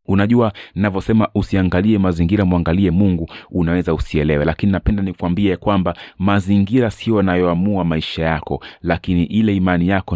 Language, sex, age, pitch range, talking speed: Swahili, male, 30-49, 85-100 Hz, 125 wpm